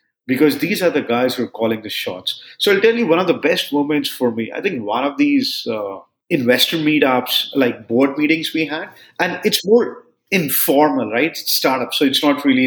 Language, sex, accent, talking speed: English, male, Indian, 210 wpm